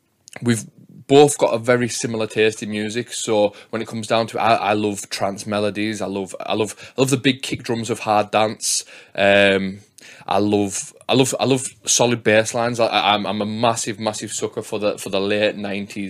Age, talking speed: 20-39, 210 wpm